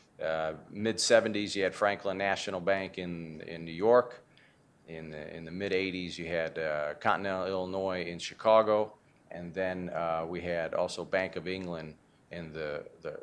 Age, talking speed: 40-59, 170 wpm